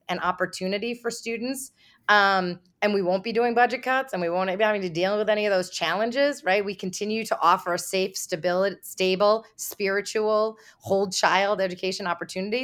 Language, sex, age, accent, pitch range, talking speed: English, female, 30-49, American, 185-240 Hz, 175 wpm